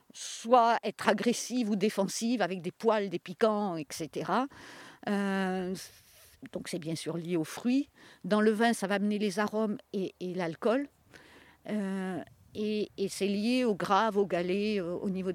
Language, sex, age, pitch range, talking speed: French, female, 50-69, 190-250 Hz, 165 wpm